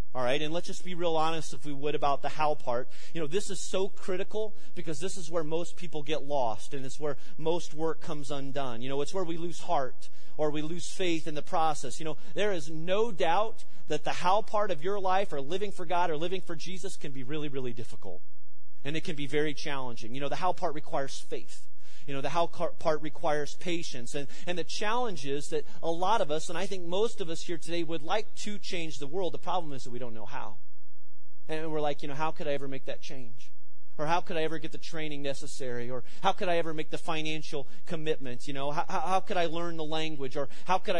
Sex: male